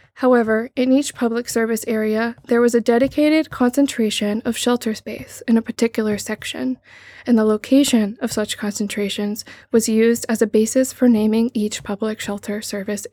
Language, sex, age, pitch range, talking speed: English, female, 20-39, 220-245 Hz, 160 wpm